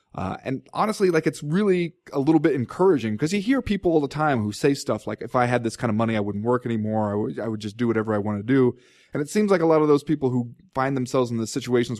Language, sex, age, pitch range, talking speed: English, male, 20-39, 110-145 Hz, 290 wpm